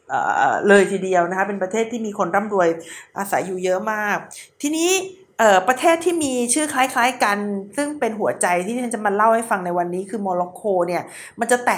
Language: Thai